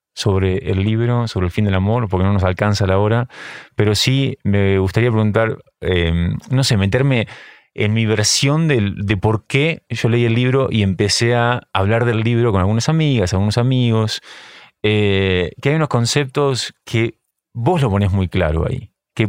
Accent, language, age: Argentinian, English, 20-39